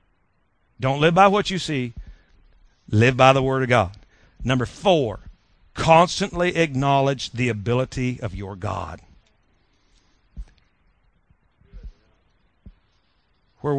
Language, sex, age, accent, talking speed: English, male, 50-69, American, 95 wpm